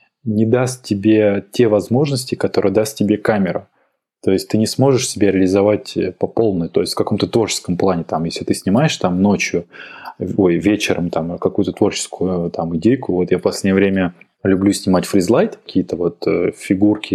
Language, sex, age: Russian, male, 20-39